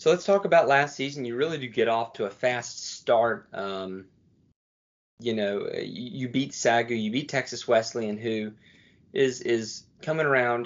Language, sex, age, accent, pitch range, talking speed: English, male, 20-39, American, 115-135 Hz, 175 wpm